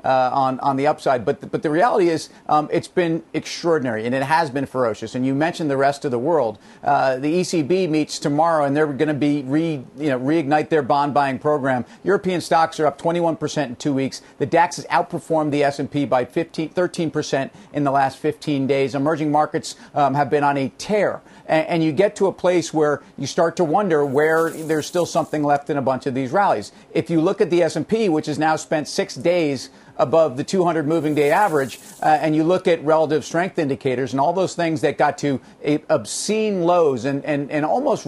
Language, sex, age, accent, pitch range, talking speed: English, male, 50-69, American, 140-165 Hz, 220 wpm